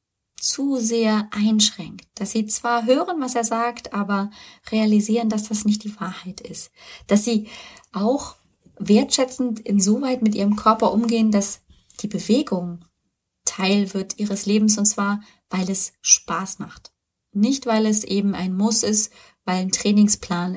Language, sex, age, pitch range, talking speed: German, female, 20-39, 200-235 Hz, 145 wpm